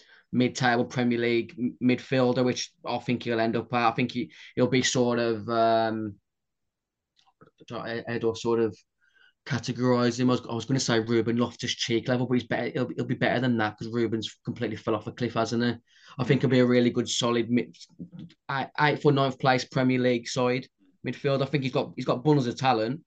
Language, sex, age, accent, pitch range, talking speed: English, male, 10-29, British, 115-125 Hz, 210 wpm